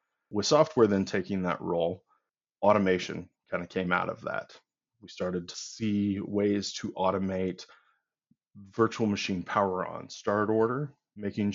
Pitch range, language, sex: 95-110 Hz, English, male